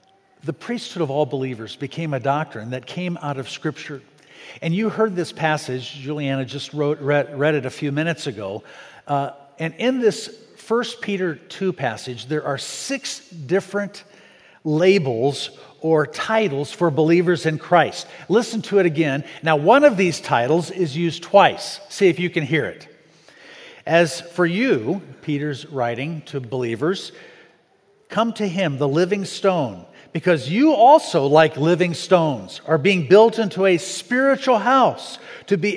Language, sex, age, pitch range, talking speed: English, male, 50-69, 140-200 Hz, 155 wpm